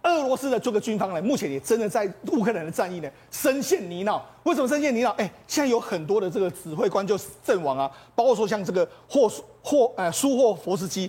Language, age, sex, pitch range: Chinese, 40-59, male, 190-270 Hz